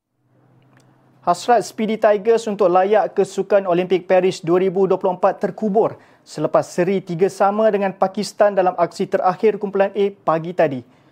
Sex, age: male, 30-49